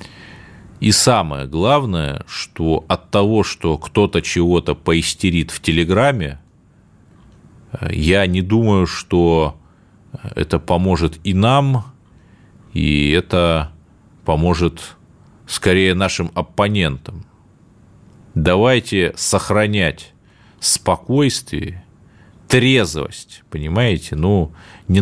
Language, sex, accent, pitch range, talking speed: Russian, male, native, 80-100 Hz, 80 wpm